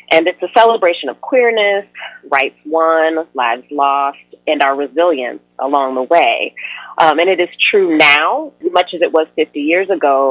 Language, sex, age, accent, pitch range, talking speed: English, female, 30-49, American, 140-195 Hz, 170 wpm